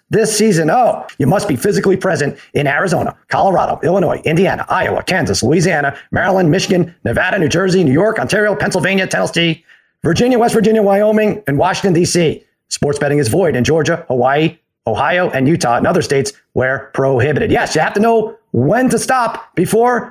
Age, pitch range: 40-59, 165-210 Hz